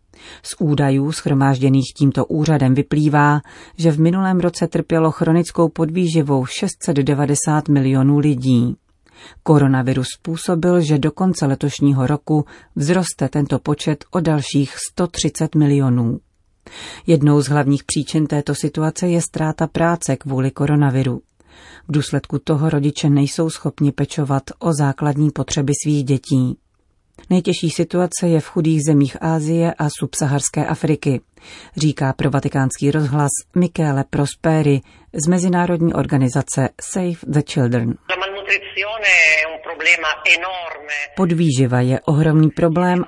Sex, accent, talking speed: female, native, 110 wpm